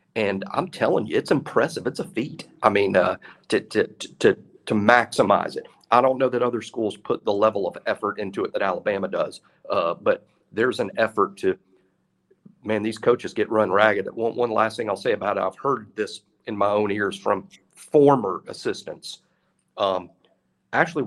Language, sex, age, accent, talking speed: English, male, 40-59, American, 190 wpm